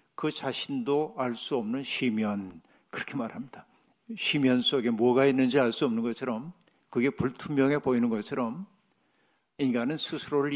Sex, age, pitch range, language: male, 50-69, 125-155 Hz, Korean